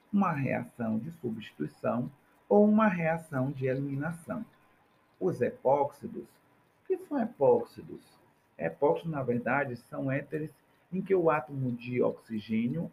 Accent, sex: Brazilian, male